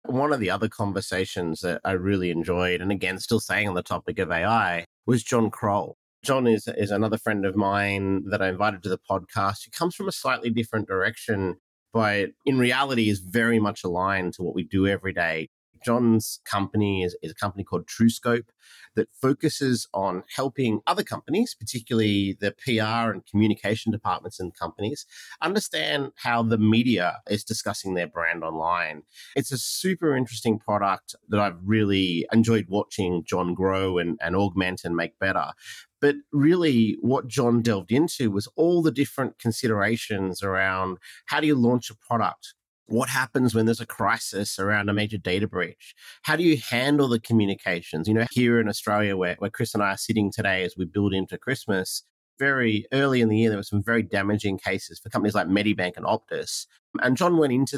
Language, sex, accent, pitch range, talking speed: English, male, Australian, 95-115 Hz, 185 wpm